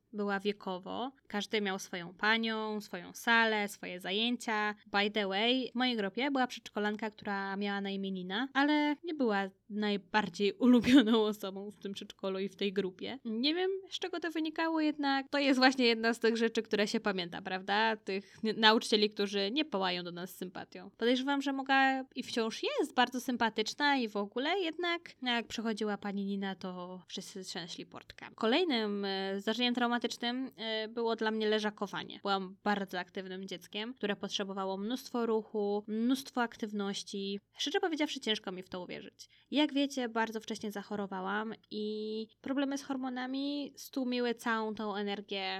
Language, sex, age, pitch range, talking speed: Polish, female, 20-39, 200-250 Hz, 160 wpm